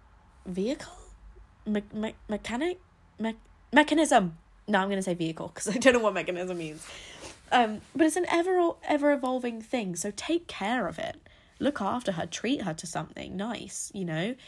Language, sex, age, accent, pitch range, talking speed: English, female, 20-39, British, 185-255 Hz, 170 wpm